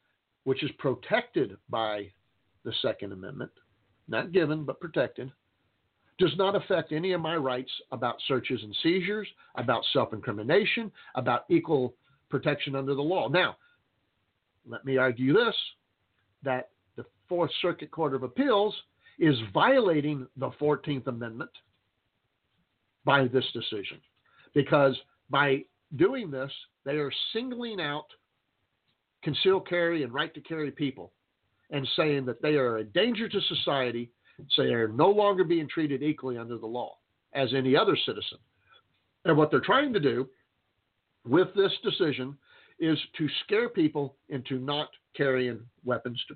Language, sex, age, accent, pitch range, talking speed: English, male, 50-69, American, 120-165 Hz, 140 wpm